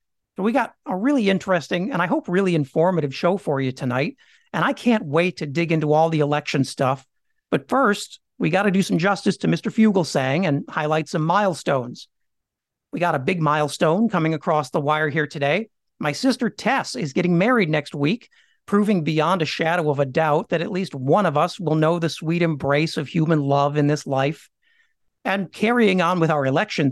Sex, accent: male, American